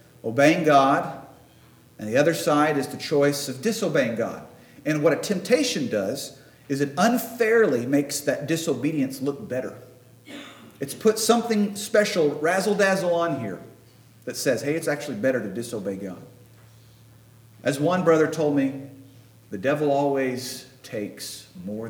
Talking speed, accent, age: 140 wpm, American, 50-69